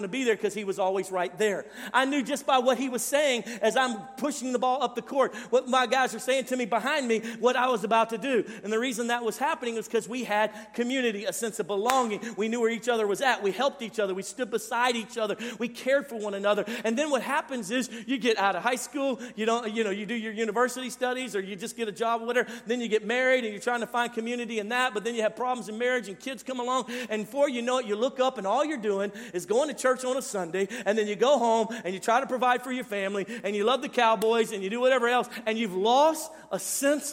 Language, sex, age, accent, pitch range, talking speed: English, male, 40-59, American, 220-255 Hz, 285 wpm